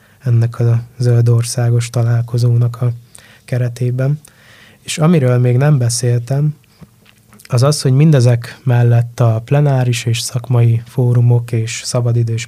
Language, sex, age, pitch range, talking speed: Hungarian, male, 20-39, 115-125 Hz, 115 wpm